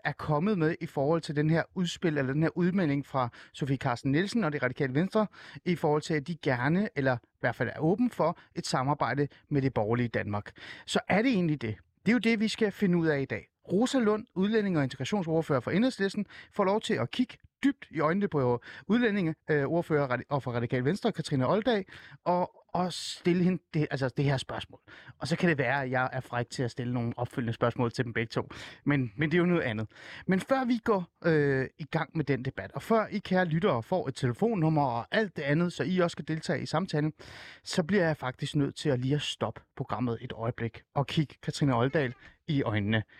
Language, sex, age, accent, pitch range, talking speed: Danish, male, 30-49, native, 125-175 Hz, 225 wpm